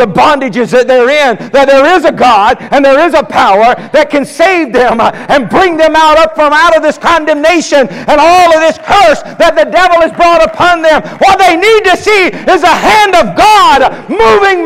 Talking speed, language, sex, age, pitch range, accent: 215 wpm, English, male, 50-69, 325-390 Hz, American